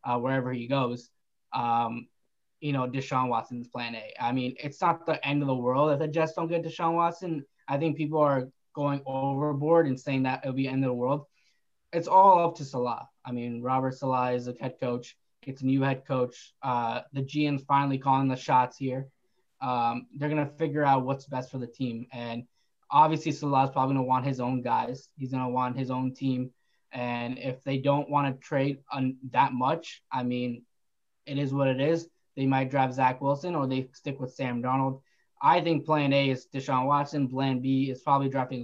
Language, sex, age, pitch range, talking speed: English, male, 10-29, 125-145 Hz, 215 wpm